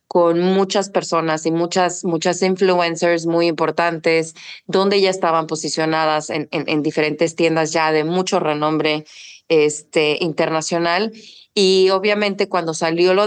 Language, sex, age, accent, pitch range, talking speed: English, female, 20-39, Mexican, 160-185 Hz, 130 wpm